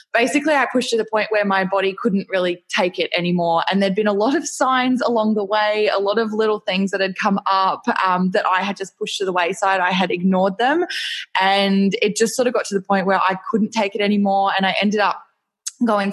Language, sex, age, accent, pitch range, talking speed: English, female, 20-39, Australian, 185-210 Hz, 245 wpm